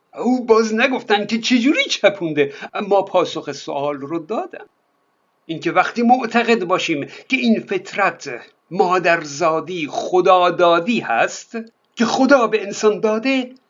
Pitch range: 180-240 Hz